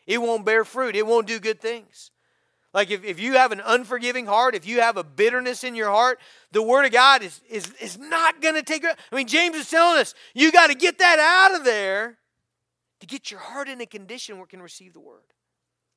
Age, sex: 40-59, male